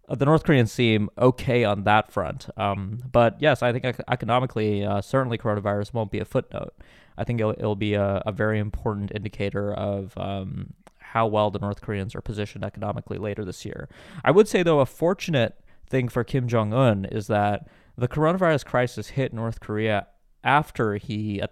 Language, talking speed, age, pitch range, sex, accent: English, 180 wpm, 20-39, 105-125 Hz, male, American